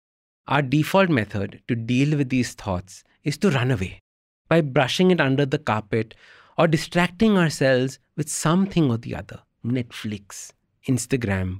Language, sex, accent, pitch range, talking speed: English, male, Indian, 105-155 Hz, 145 wpm